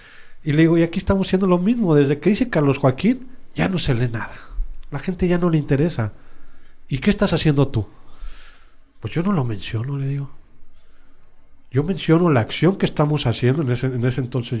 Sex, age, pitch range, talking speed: male, 40-59, 120-165 Hz, 195 wpm